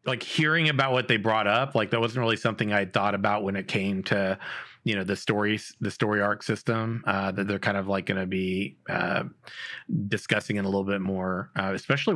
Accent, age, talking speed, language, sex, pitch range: American, 30-49, 220 wpm, English, male, 105-120 Hz